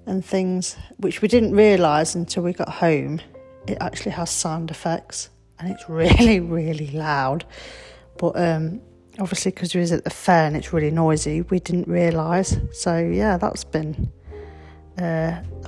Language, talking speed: English, 155 wpm